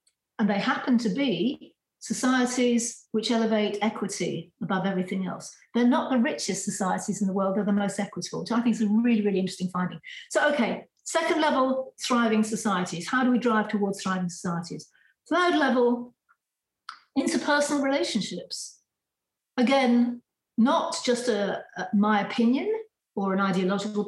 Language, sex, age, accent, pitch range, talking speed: English, female, 50-69, British, 200-250 Hz, 150 wpm